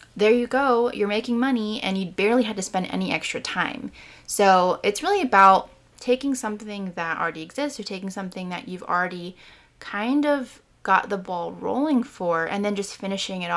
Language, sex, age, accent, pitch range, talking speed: English, female, 20-39, American, 185-230 Hz, 185 wpm